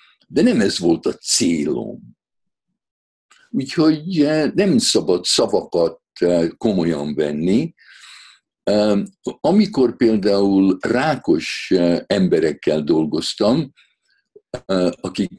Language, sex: Hungarian, male